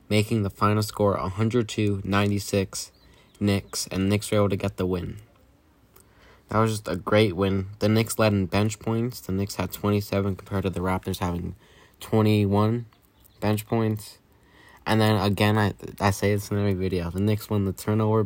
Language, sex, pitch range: English, male, 95-110 Hz